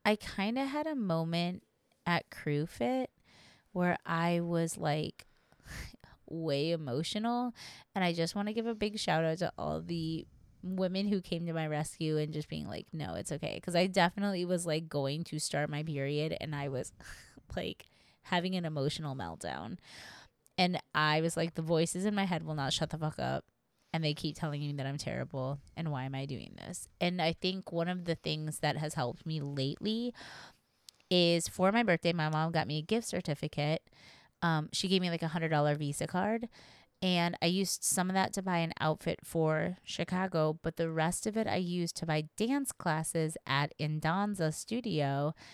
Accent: American